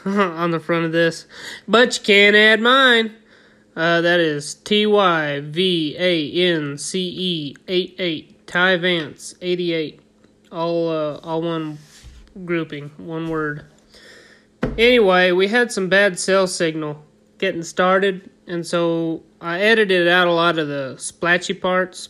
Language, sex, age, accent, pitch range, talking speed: English, male, 20-39, American, 160-190 Hz, 120 wpm